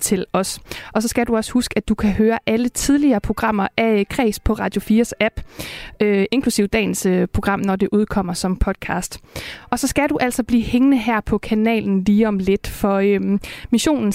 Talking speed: 200 wpm